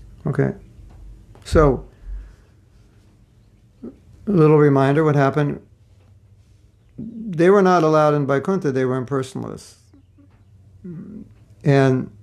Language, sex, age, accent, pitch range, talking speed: English, male, 60-79, American, 105-140 Hz, 85 wpm